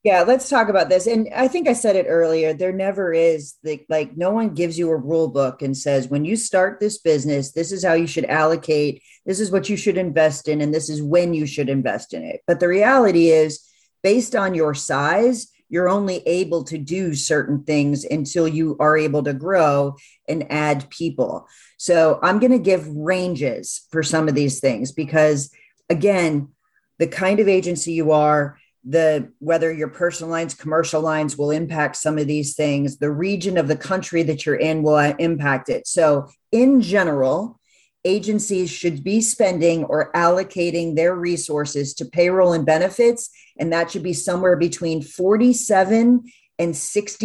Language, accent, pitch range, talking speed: English, American, 150-190 Hz, 180 wpm